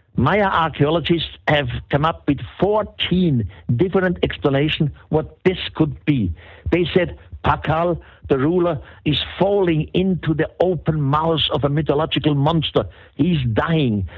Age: 60-79